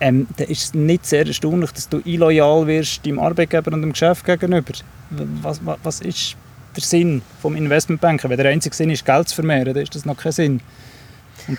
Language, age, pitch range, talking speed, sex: German, 20-39, 130-155 Hz, 205 wpm, male